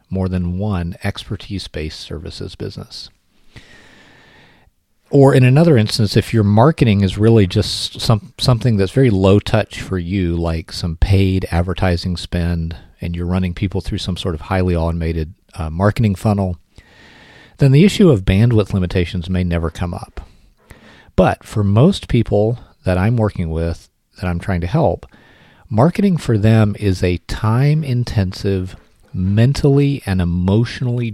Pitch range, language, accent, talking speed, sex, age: 90-115 Hz, English, American, 140 wpm, male, 40-59